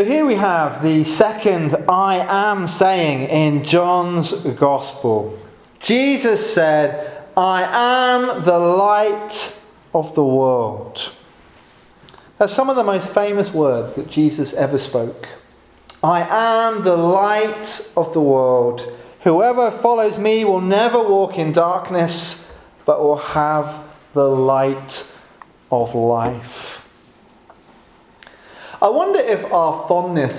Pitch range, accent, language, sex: 145-195 Hz, British, English, male